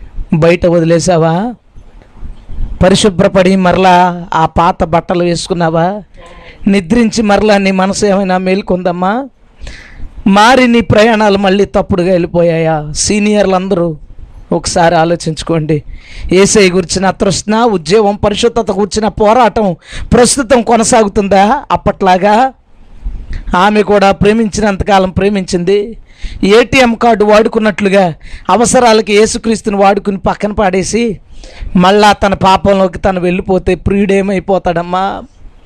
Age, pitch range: 20-39, 180-215 Hz